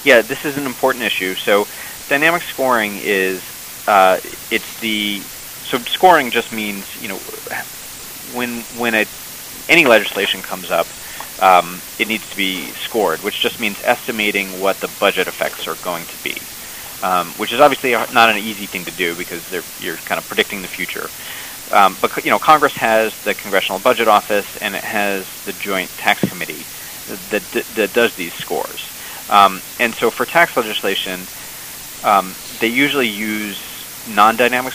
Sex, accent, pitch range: male, American, 95-120 Hz